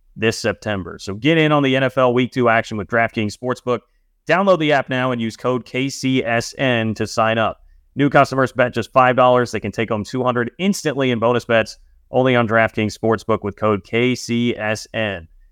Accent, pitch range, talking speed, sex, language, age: American, 115-130 Hz, 180 wpm, male, English, 30-49